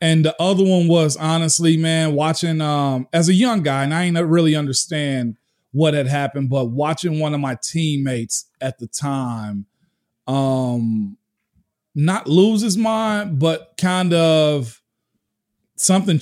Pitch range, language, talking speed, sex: 135-165 Hz, English, 145 wpm, male